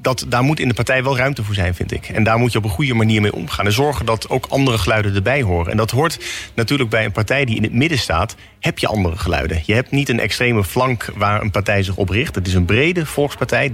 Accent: Dutch